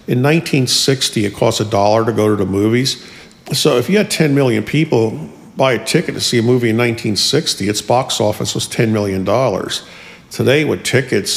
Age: 50-69